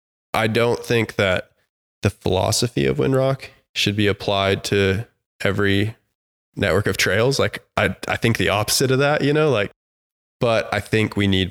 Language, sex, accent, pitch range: English, male, American, 95-115 Hz